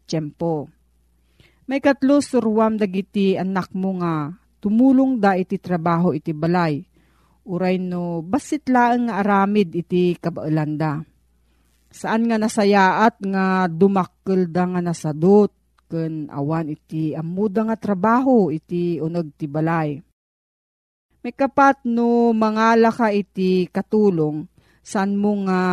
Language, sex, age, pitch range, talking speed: Filipino, female, 40-59, 165-220 Hz, 105 wpm